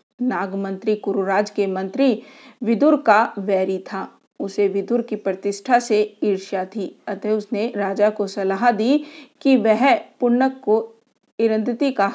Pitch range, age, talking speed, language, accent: 200-245 Hz, 50-69, 140 wpm, Hindi, native